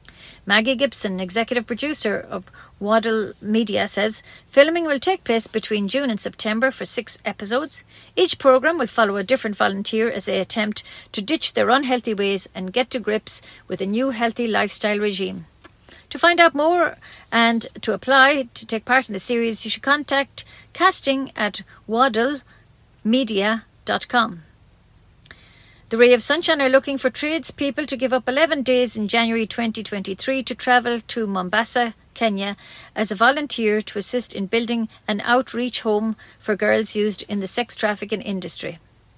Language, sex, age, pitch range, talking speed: English, female, 50-69, 210-260 Hz, 155 wpm